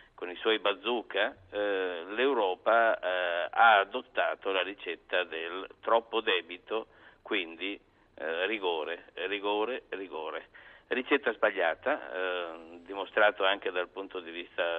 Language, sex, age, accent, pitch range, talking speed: Italian, male, 50-69, native, 100-145 Hz, 115 wpm